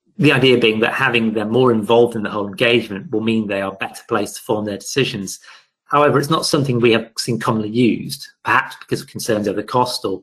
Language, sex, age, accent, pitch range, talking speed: English, male, 30-49, British, 105-125 Hz, 230 wpm